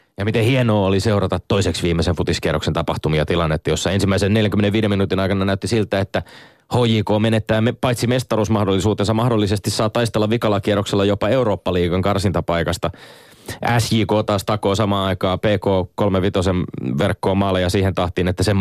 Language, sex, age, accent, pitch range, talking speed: Finnish, male, 20-39, native, 90-115 Hz, 140 wpm